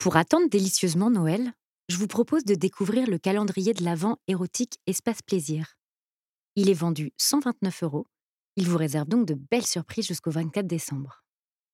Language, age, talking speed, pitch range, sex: French, 30-49, 160 wpm, 160-225 Hz, female